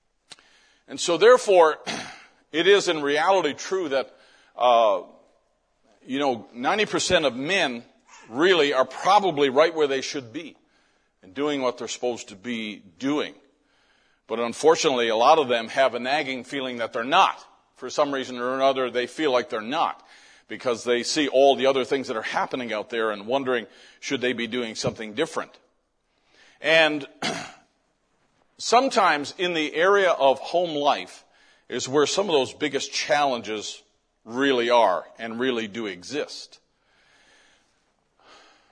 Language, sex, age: English, male, 50-69